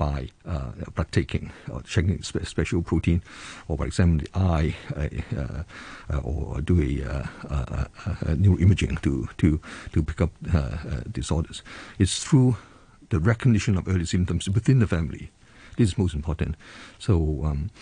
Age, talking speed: 60-79, 165 wpm